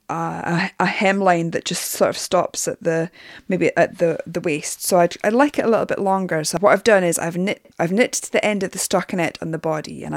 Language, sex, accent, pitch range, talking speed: English, female, British, 160-190 Hz, 255 wpm